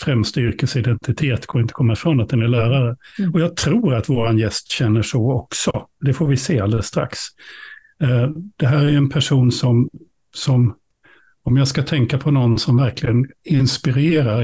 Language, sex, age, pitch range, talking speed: Swedish, male, 60-79, 125-155 Hz, 170 wpm